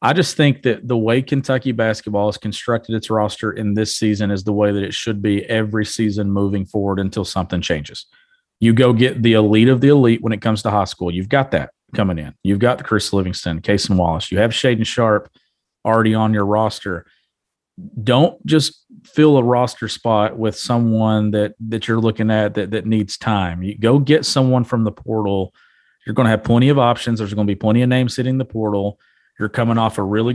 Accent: American